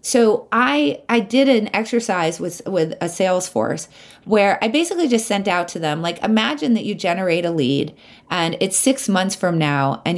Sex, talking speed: female, 195 wpm